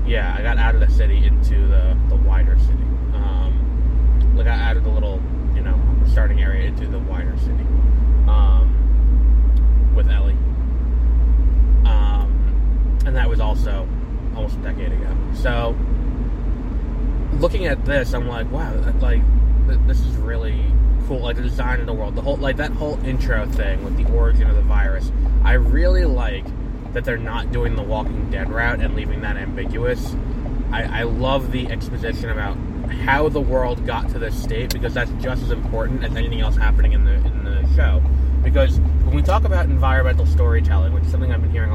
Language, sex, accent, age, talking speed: English, male, American, 20-39, 180 wpm